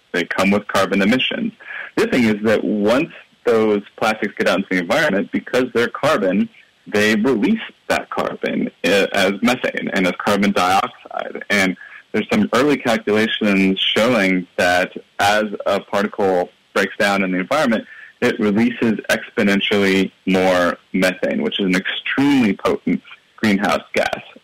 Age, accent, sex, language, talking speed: 30-49, American, male, English, 140 wpm